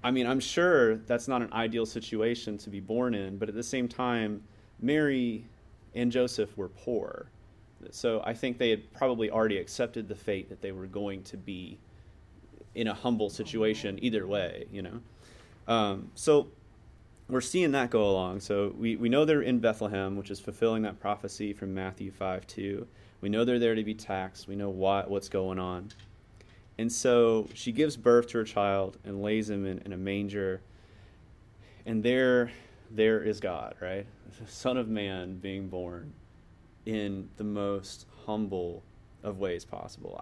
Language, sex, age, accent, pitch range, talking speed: English, male, 30-49, American, 100-115 Hz, 175 wpm